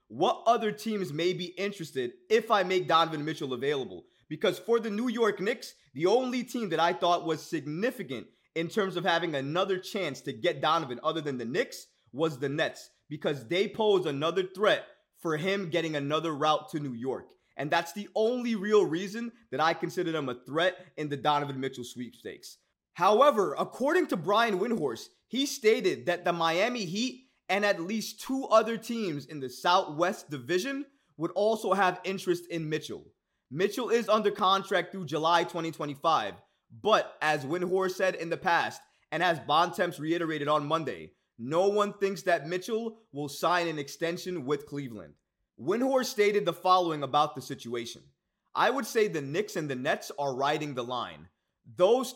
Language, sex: English, male